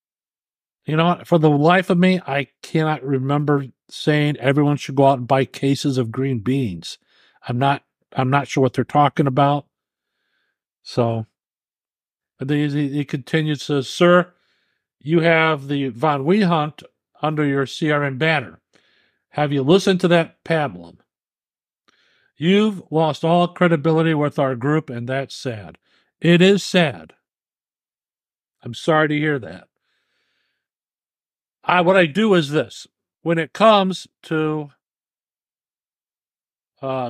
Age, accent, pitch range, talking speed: 50-69, American, 135-175 Hz, 130 wpm